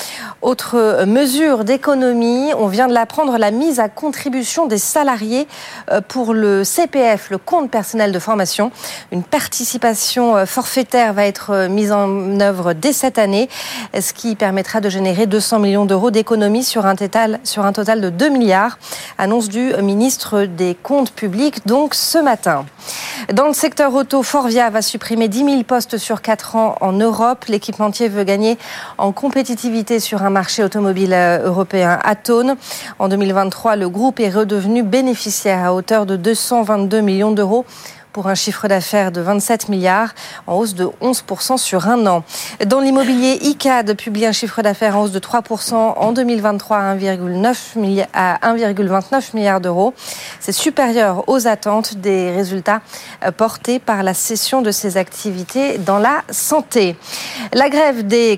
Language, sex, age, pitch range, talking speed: French, female, 40-59, 200-245 Hz, 150 wpm